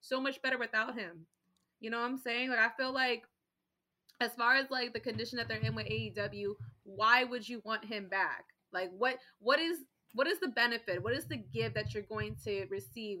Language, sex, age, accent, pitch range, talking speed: English, female, 20-39, American, 190-240 Hz, 220 wpm